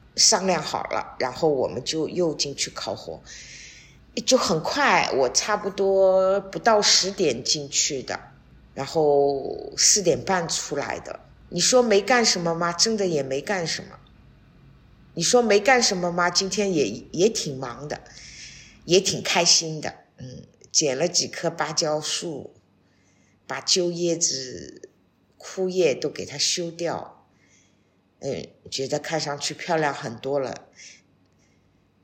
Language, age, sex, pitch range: Chinese, 50-69, female, 145-195 Hz